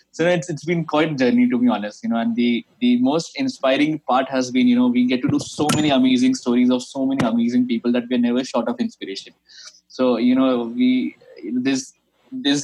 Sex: male